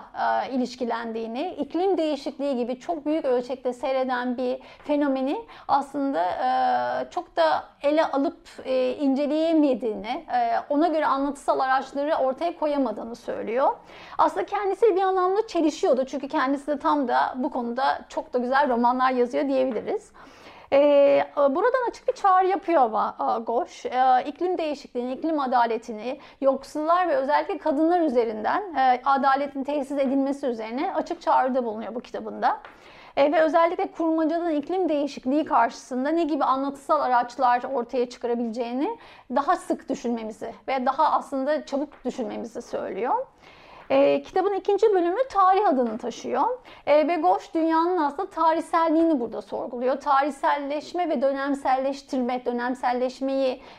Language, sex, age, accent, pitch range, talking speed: Turkish, female, 40-59, native, 255-325 Hz, 115 wpm